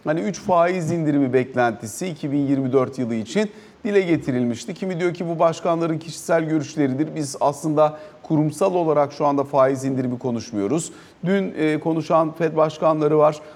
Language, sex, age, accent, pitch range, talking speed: Turkish, male, 40-59, native, 145-175 Hz, 135 wpm